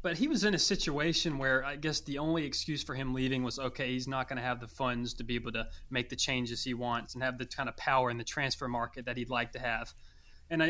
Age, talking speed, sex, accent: 20-39, 275 wpm, male, American